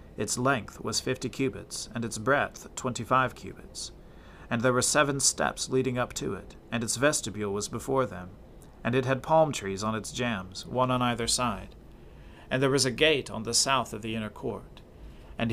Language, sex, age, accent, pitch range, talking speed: English, male, 40-59, American, 105-130 Hz, 195 wpm